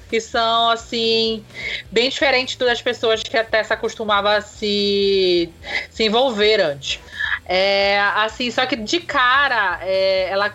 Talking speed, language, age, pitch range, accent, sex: 140 wpm, Portuguese, 20-39, 200-250 Hz, Brazilian, female